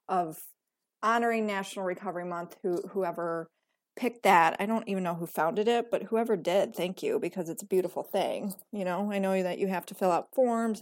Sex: female